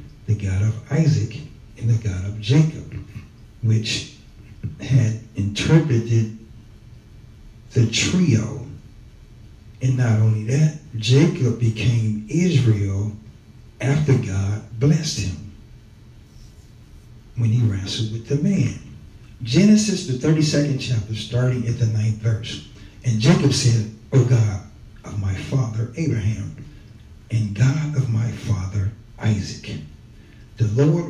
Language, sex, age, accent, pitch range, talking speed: English, male, 60-79, American, 110-135 Hz, 110 wpm